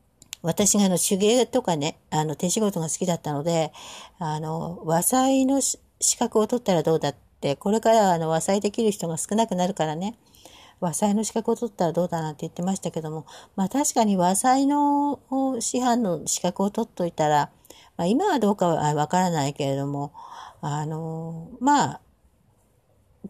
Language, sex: Japanese, female